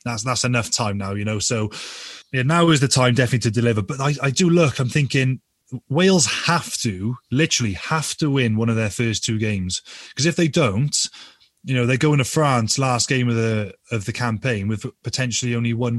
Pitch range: 110-135 Hz